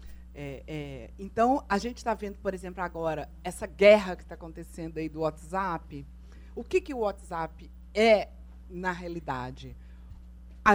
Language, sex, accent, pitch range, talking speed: Portuguese, female, Brazilian, 155-250 Hz, 140 wpm